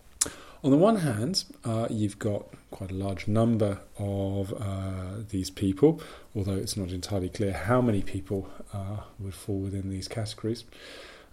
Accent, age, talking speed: British, 30-49, 160 wpm